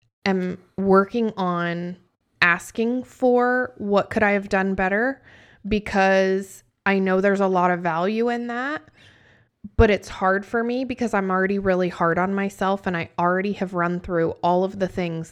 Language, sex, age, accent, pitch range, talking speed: English, female, 20-39, American, 180-210 Hz, 170 wpm